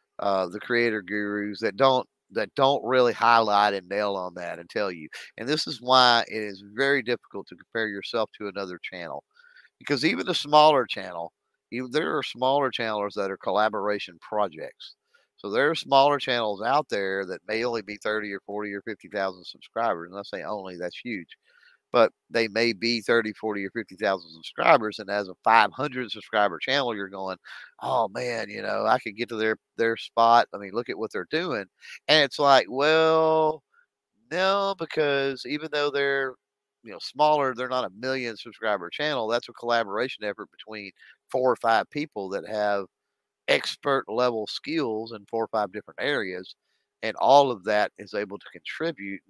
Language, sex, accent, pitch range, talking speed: English, male, American, 100-130 Hz, 180 wpm